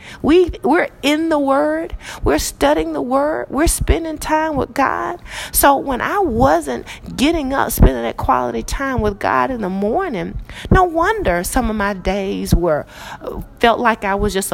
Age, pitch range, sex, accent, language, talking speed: 40-59, 190-280 Hz, female, American, English, 170 wpm